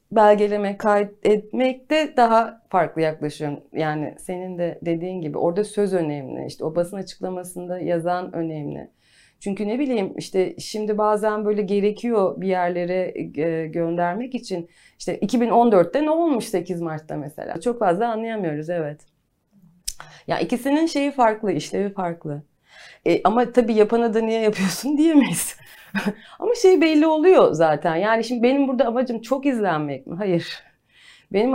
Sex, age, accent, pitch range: female, 30-49, native, 175-230 Hz